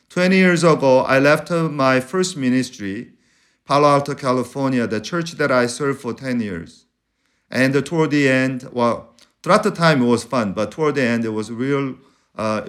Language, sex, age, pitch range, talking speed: English, male, 50-69, 130-175 Hz, 180 wpm